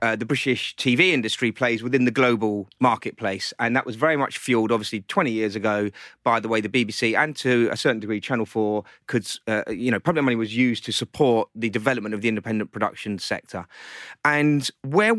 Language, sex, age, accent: English, male, 30-49, British